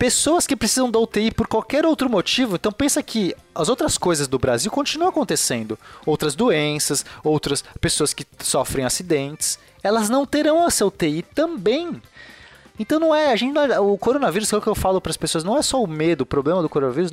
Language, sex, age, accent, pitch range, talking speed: Portuguese, male, 20-39, Brazilian, 140-225 Hz, 185 wpm